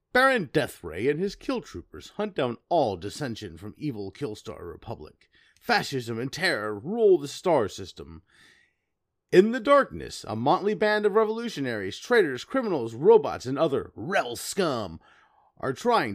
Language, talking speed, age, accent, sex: English, 140 wpm, 30-49, American, male